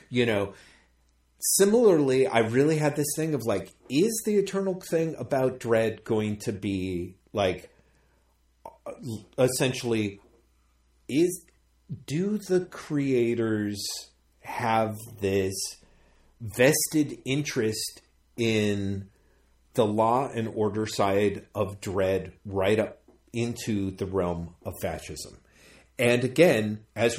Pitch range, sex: 105-155 Hz, male